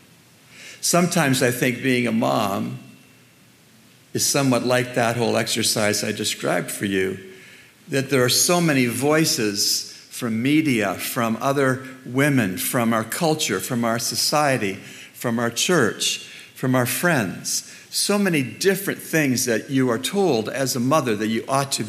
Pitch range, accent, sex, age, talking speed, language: 120-150 Hz, American, male, 60-79, 150 wpm, English